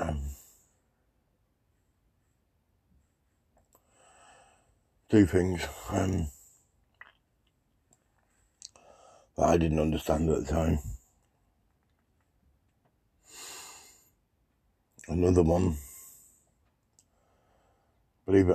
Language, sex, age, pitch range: English, male, 60-79, 80-95 Hz